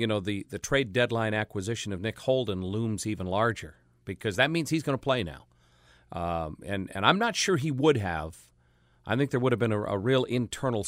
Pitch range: 95-125 Hz